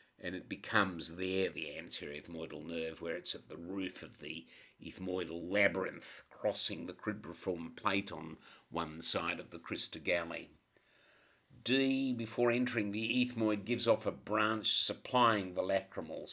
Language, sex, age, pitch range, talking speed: English, male, 50-69, 85-105 Hz, 145 wpm